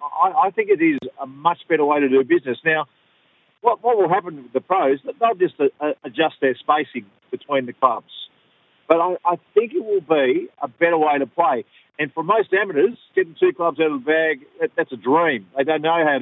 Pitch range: 145-230 Hz